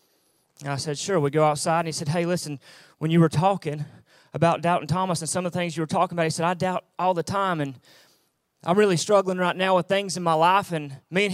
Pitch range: 165-210 Hz